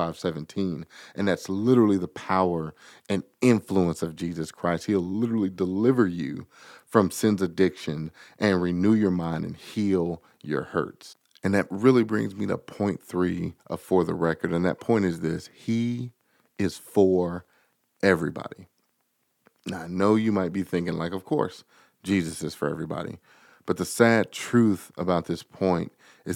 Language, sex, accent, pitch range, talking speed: English, male, American, 85-105 Hz, 155 wpm